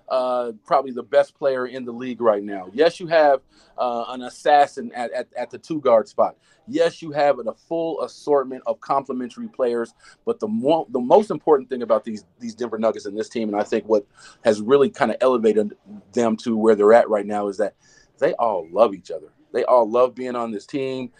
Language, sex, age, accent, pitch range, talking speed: English, male, 40-59, American, 125-165 Hz, 215 wpm